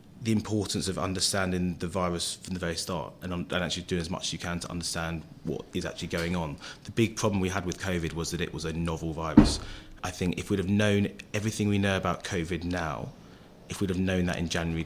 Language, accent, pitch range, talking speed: English, British, 85-100 Hz, 240 wpm